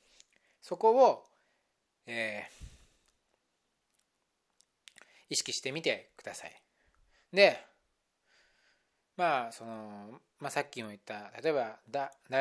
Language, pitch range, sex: Japanese, 115-190 Hz, male